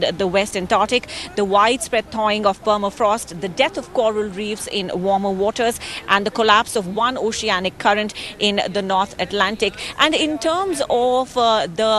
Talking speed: 165 wpm